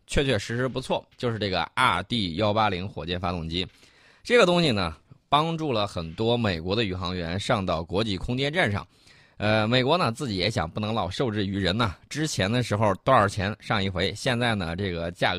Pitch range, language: 95-130 Hz, Chinese